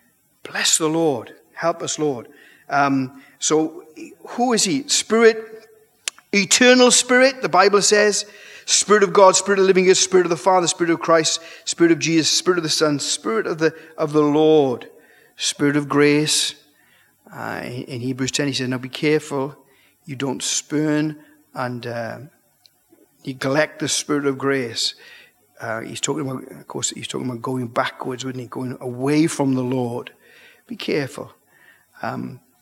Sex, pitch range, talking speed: male, 135-195 Hz, 160 wpm